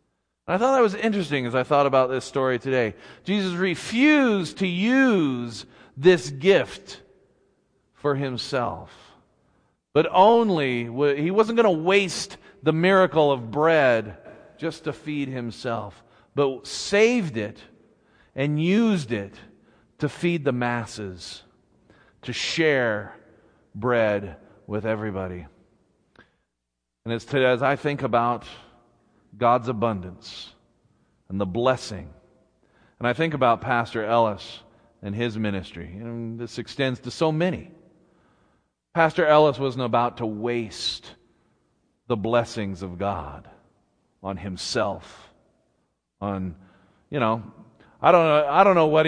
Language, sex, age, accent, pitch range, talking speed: English, male, 40-59, American, 105-150 Hz, 120 wpm